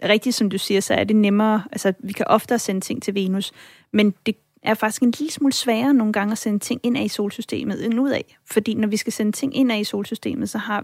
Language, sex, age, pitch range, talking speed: Danish, female, 30-49, 200-235 Hz, 255 wpm